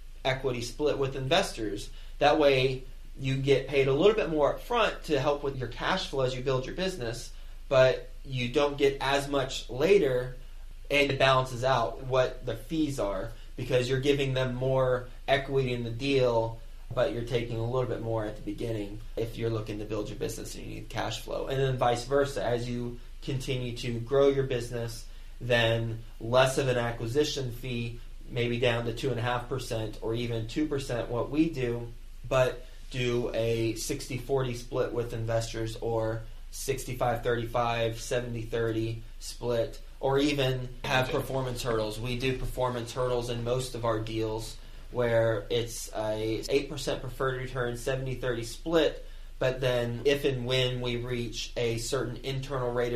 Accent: American